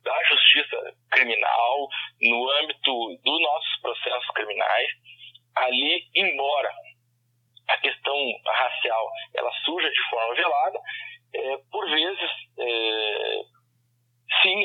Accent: Brazilian